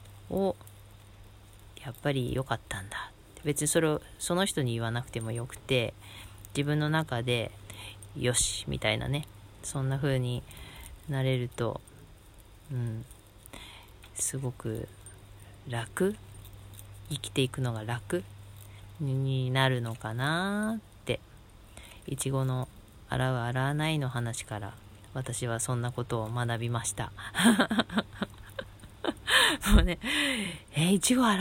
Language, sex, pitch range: Japanese, female, 105-150 Hz